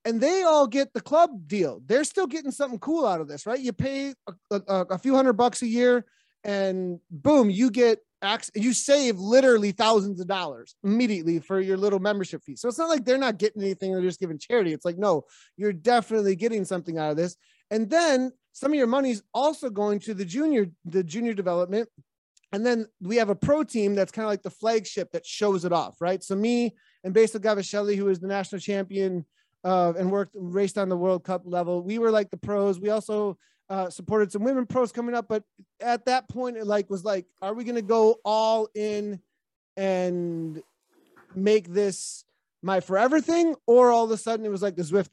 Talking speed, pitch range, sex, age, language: 215 wpm, 190-240 Hz, male, 30-49, English